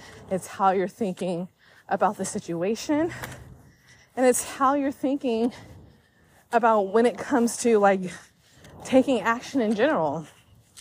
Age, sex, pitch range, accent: 20-39, female, 170-235 Hz, American